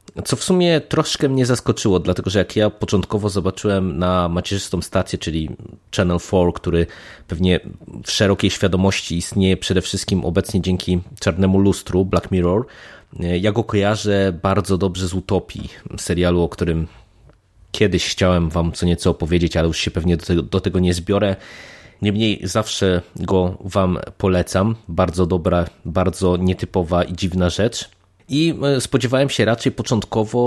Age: 20-39